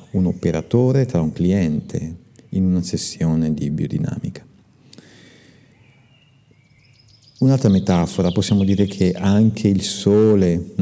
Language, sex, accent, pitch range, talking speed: Italian, male, native, 90-125 Hz, 100 wpm